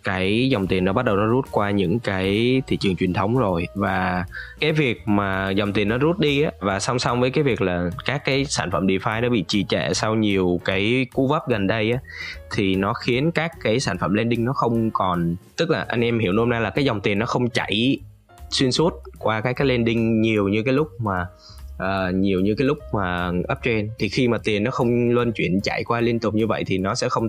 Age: 20-39